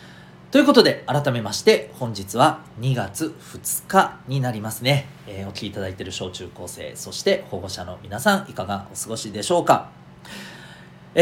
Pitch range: 105-165 Hz